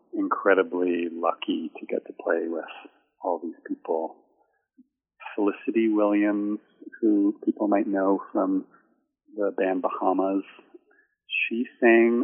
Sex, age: male, 40-59